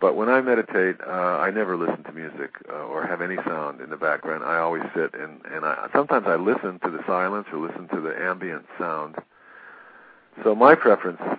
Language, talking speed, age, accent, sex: English, 205 wpm, 50-69, American, male